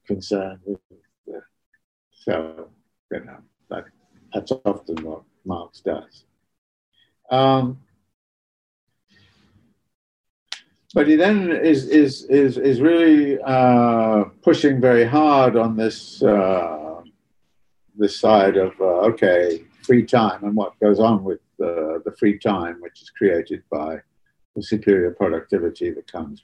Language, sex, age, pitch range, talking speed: English, male, 60-79, 100-130 Hz, 115 wpm